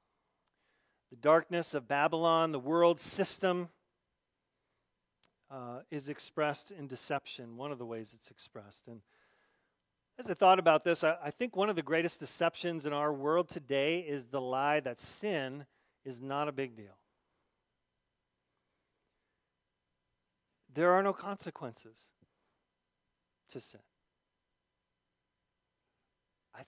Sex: male